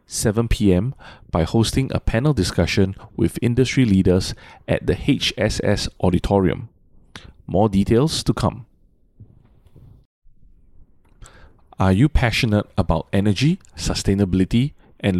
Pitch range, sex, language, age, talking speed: 95-120 Hz, male, English, 20-39, 95 wpm